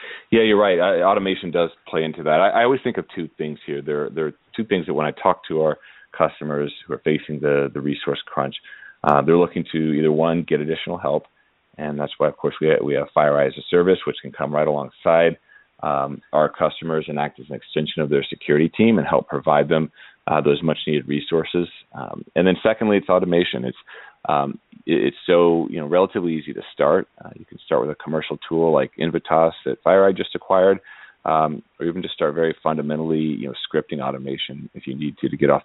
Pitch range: 75-85 Hz